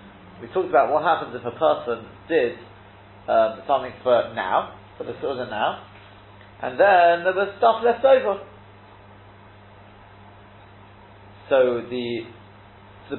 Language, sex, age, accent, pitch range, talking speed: English, male, 40-59, British, 100-160 Hz, 125 wpm